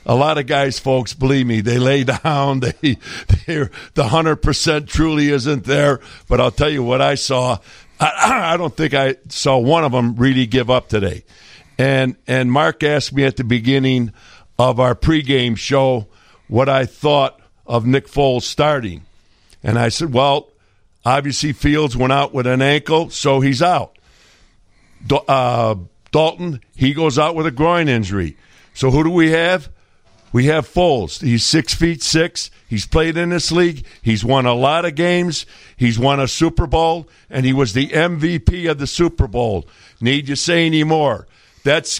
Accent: American